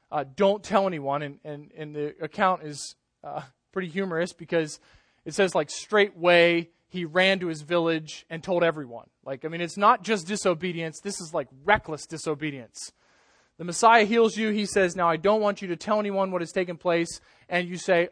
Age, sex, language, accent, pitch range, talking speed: 20-39, male, English, American, 160-195 Hz, 195 wpm